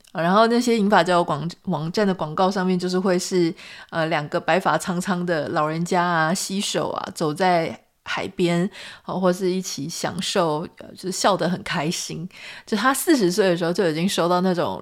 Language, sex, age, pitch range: Chinese, female, 20-39, 175-220 Hz